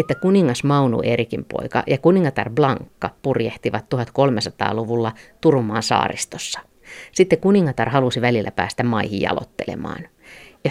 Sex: female